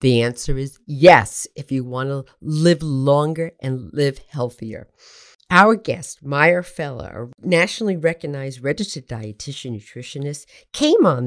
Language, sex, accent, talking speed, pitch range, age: English, female, American, 135 wpm, 140-205 Hz, 50-69